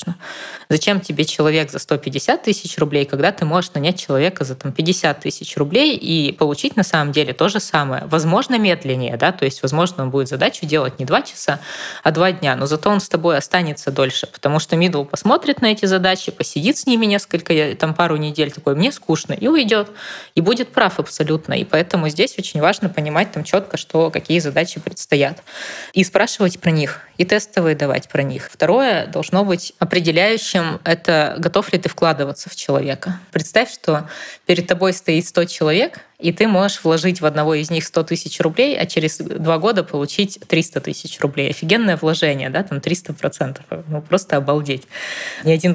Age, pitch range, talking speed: 20-39, 145-185 Hz, 185 wpm